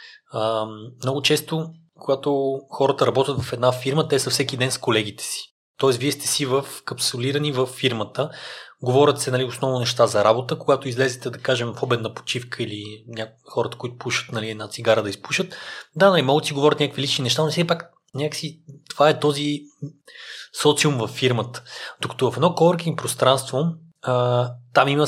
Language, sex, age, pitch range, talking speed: Bulgarian, male, 20-39, 125-145 Hz, 170 wpm